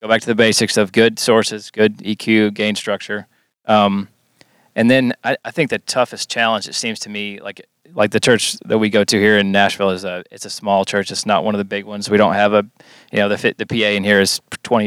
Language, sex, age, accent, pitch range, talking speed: English, male, 20-39, American, 100-110 Hz, 250 wpm